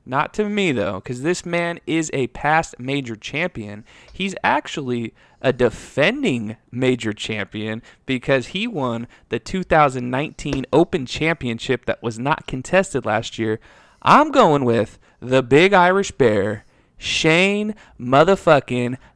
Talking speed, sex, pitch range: 125 wpm, male, 120-160 Hz